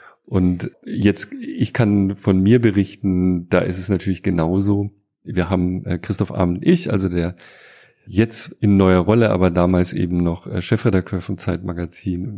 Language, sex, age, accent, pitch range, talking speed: German, male, 30-49, German, 90-105 Hz, 150 wpm